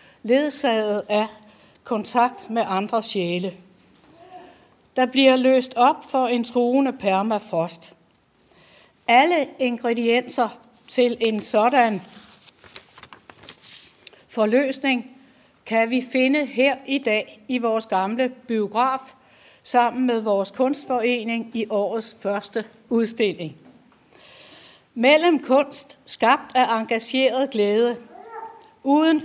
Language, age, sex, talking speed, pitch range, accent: Danish, 60-79, female, 90 wpm, 210-260 Hz, native